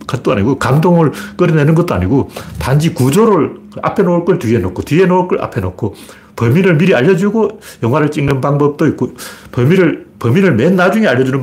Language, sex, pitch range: Korean, male, 100-160 Hz